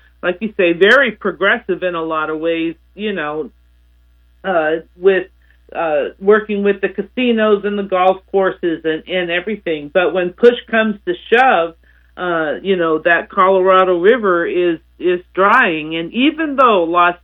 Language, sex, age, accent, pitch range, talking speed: English, male, 50-69, American, 155-205 Hz, 155 wpm